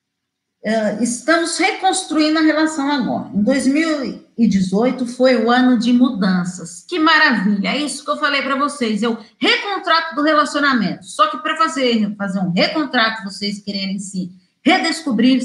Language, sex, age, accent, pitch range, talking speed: Portuguese, female, 40-59, Brazilian, 225-295 Hz, 145 wpm